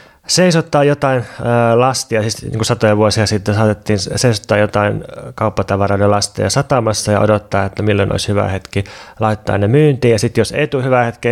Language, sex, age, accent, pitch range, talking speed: Finnish, male, 20-39, native, 105-120 Hz, 160 wpm